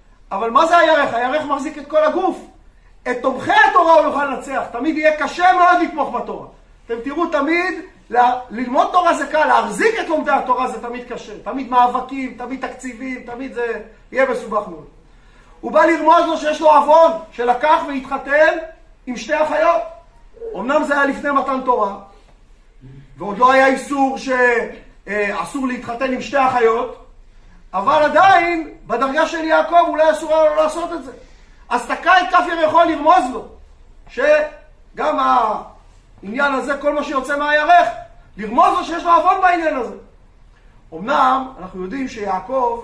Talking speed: 150 wpm